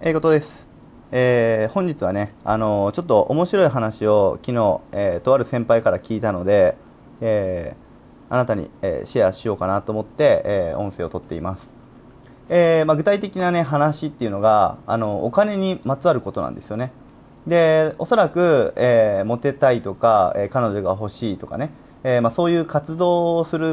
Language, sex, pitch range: Japanese, male, 110-155 Hz